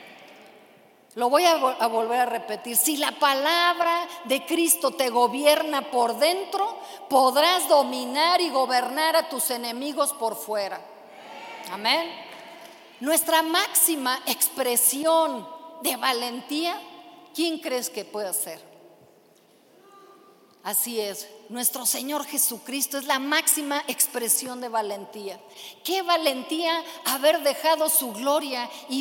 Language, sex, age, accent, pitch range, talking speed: Spanish, female, 40-59, Mexican, 265-325 Hz, 110 wpm